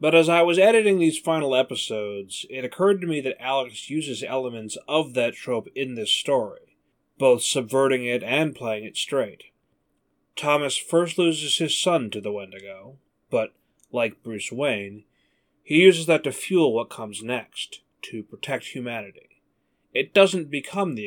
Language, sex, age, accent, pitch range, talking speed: English, male, 30-49, American, 110-160 Hz, 160 wpm